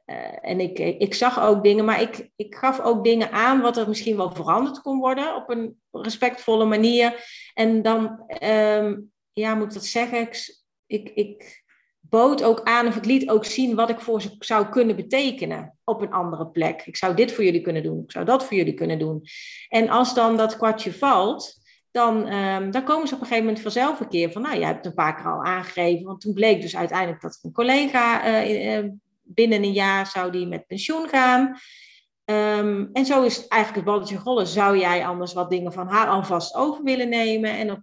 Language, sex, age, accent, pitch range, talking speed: Dutch, female, 40-59, Dutch, 185-235 Hz, 210 wpm